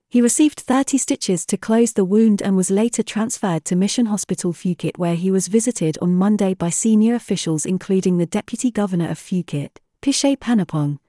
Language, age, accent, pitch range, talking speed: English, 40-59, British, 175-225 Hz, 180 wpm